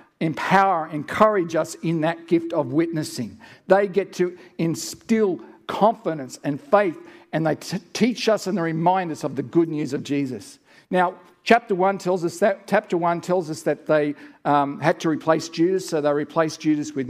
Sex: male